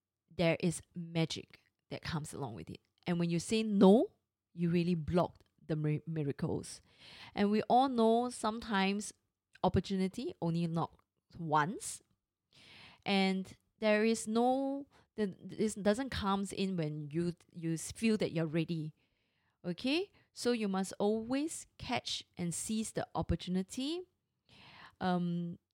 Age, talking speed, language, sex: 20-39, 130 wpm, English, female